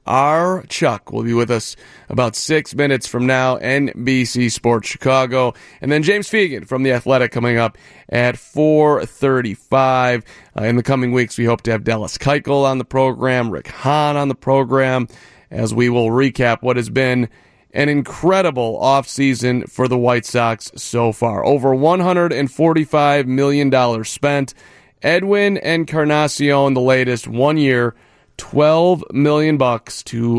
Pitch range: 115-140 Hz